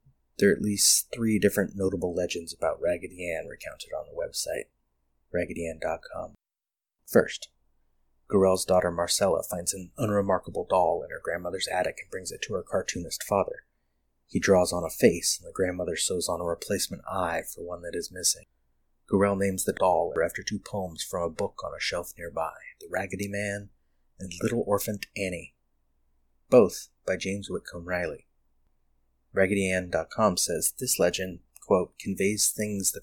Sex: male